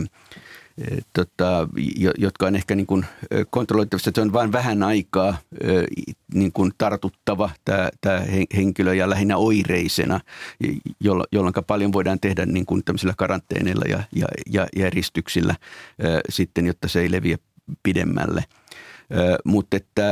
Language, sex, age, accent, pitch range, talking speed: Finnish, male, 50-69, native, 95-105 Hz, 110 wpm